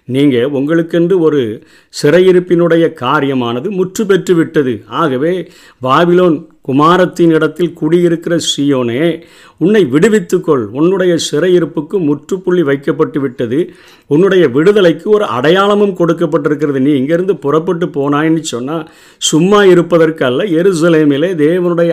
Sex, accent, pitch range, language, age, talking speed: male, native, 140-175 Hz, Tamil, 50-69, 95 wpm